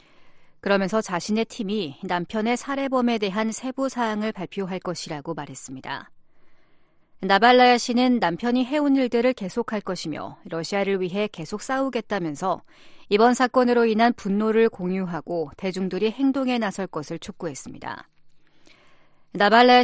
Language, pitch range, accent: Korean, 180-235 Hz, native